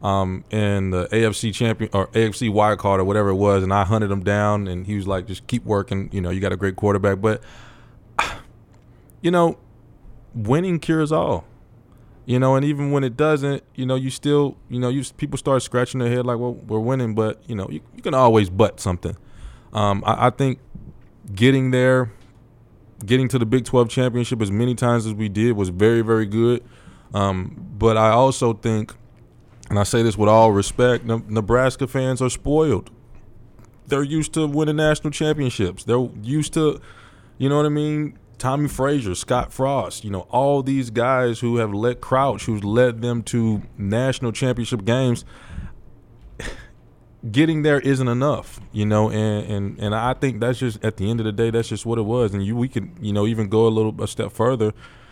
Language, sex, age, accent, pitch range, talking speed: English, male, 20-39, American, 105-130 Hz, 190 wpm